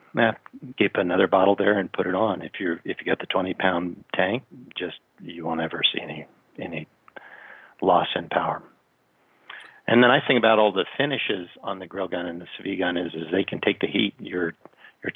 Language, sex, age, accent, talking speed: English, male, 50-69, American, 210 wpm